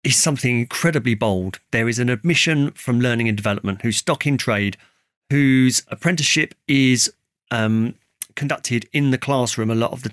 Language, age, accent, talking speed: English, 40-59, British, 165 wpm